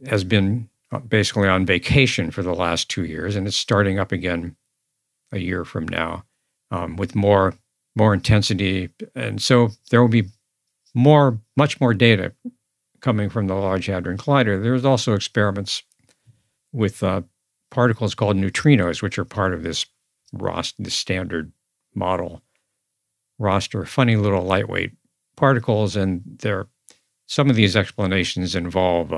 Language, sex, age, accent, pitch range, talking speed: English, male, 60-79, American, 95-120 Hz, 140 wpm